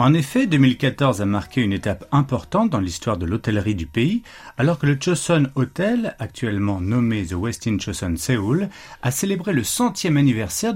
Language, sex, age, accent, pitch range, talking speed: French, male, 40-59, French, 105-165 Hz, 175 wpm